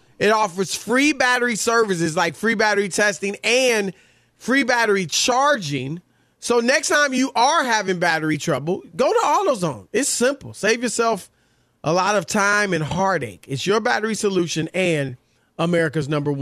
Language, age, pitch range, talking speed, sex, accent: English, 30-49, 150-205 Hz, 150 wpm, male, American